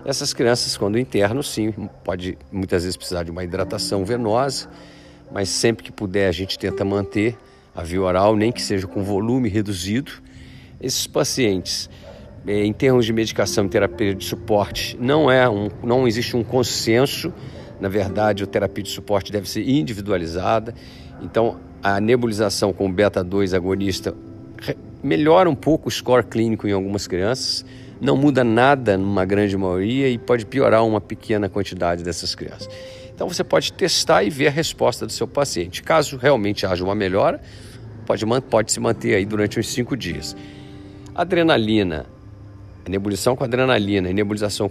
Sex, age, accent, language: male, 40-59, Brazilian, Portuguese